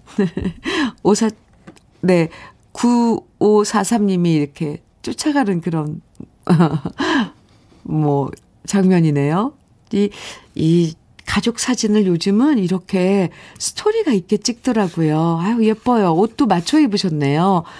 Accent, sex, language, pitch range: native, female, Korean, 170-240 Hz